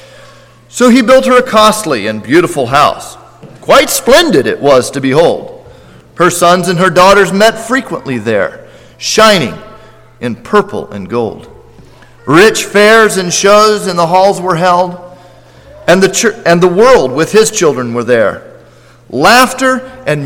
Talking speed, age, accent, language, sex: 150 wpm, 40-59, American, English, male